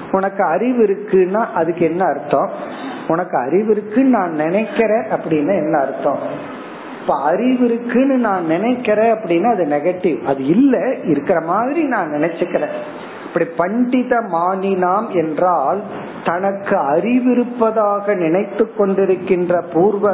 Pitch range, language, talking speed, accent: 165-215 Hz, Tamil, 60 wpm, native